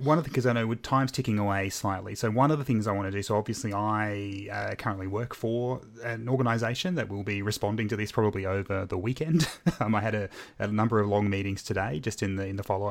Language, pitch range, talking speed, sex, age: English, 95-115 Hz, 255 wpm, male, 30-49